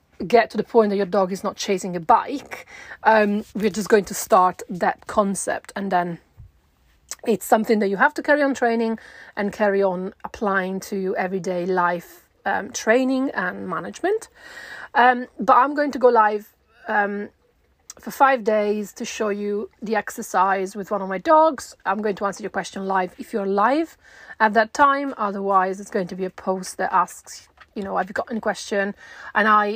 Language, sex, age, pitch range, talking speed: English, female, 30-49, 190-235 Hz, 190 wpm